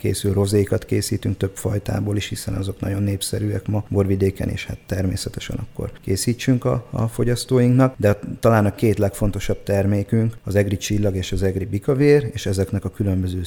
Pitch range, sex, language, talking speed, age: 95-115 Hz, male, Hungarian, 165 wpm, 30-49